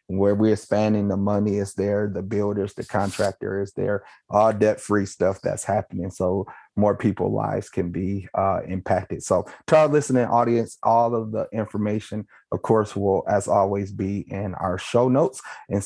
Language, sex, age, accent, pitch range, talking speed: English, male, 30-49, American, 100-115 Hz, 175 wpm